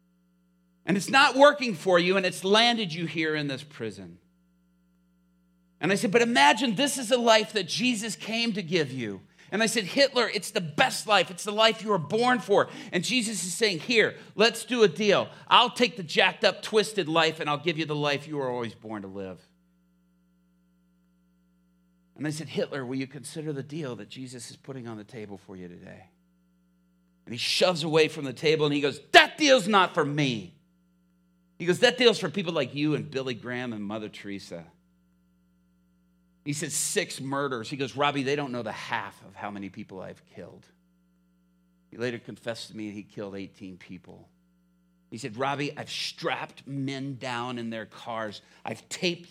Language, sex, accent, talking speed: English, male, American, 195 wpm